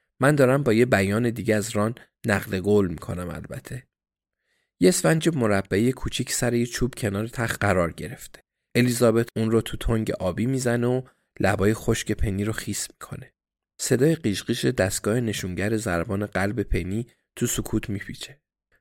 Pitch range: 100-120 Hz